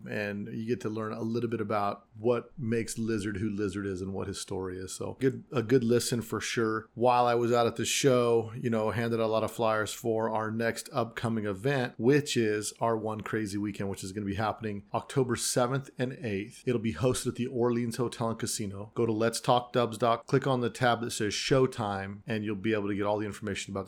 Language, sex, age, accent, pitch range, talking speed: English, male, 40-59, American, 110-120 Hz, 240 wpm